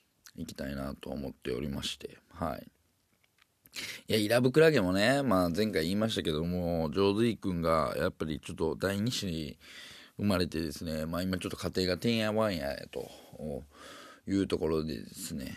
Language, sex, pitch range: Japanese, male, 80-100 Hz